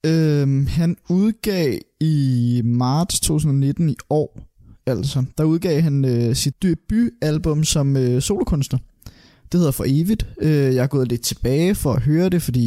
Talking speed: 155 wpm